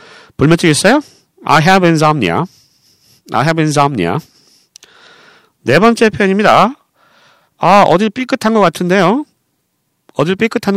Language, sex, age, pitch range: Korean, male, 40-59, 155-250 Hz